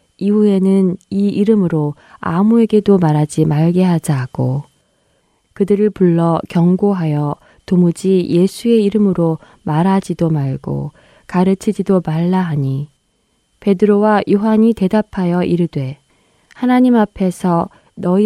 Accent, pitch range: native, 155-200 Hz